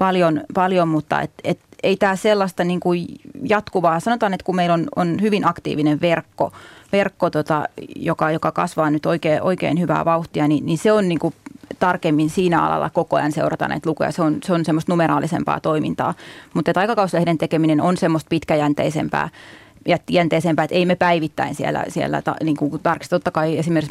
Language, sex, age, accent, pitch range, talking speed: Finnish, female, 30-49, native, 155-175 Hz, 155 wpm